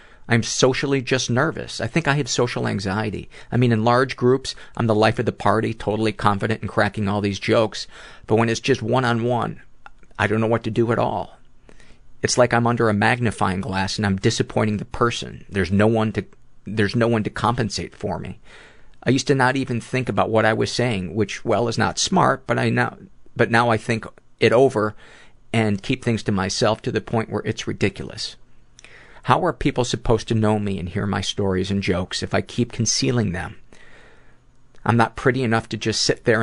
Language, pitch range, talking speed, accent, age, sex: English, 105-120 Hz, 210 wpm, American, 40-59, male